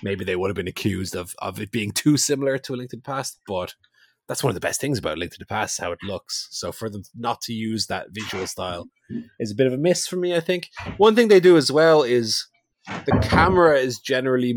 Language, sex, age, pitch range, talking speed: English, male, 20-39, 105-145 Hz, 265 wpm